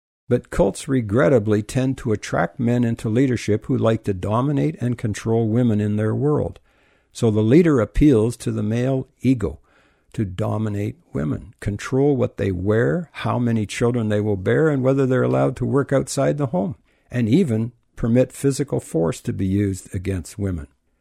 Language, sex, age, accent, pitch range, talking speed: English, male, 60-79, American, 100-130 Hz, 170 wpm